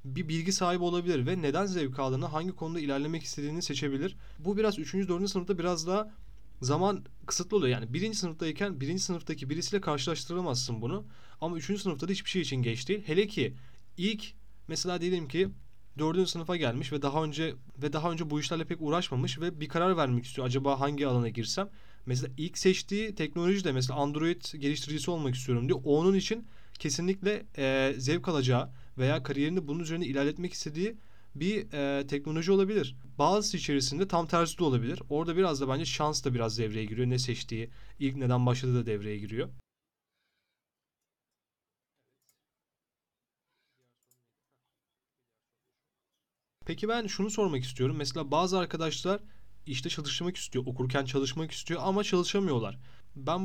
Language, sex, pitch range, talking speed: Turkish, male, 130-180 Hz, 150 wpm